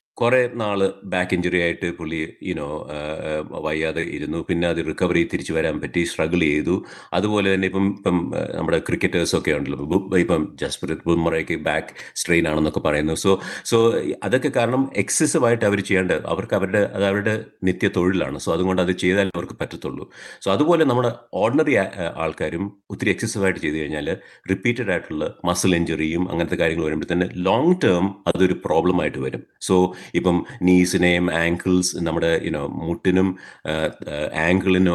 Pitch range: 85-95 Hz